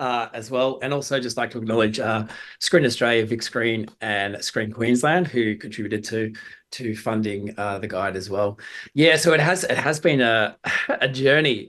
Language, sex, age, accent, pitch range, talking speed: English, male, 20-39, Australian, 110-130 Hz, 190 wpm